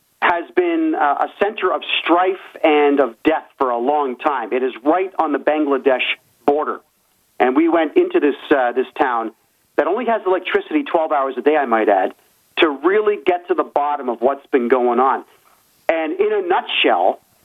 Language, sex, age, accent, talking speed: English, male, 40-59, American, 190 wpm